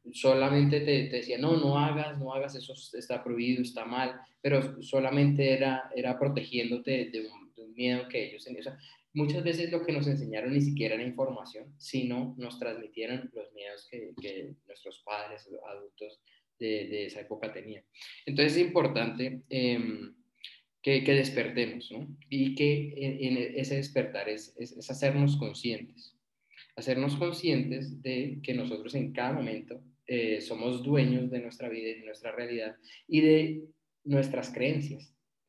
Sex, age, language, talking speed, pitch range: male, 20-39, Spanish, 160 wpm, 120-145 Hz